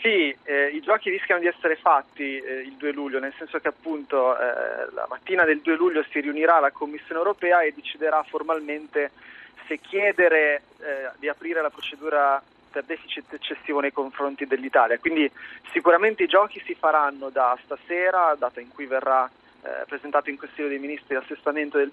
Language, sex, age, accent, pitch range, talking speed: Italian, male, 30-49, native, 140-170 Hz, 170 wpm